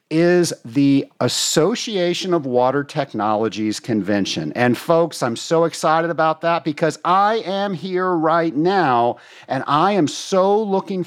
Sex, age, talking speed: male, 50-69, 135 wpm